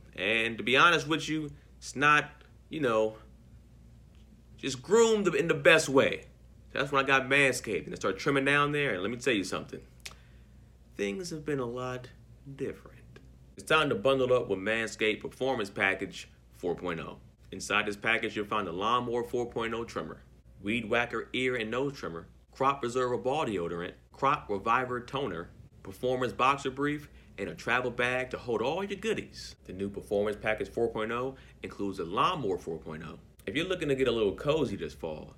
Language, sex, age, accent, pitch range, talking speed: English, male, 40-59, American, 100-130 Hz, 175 wpm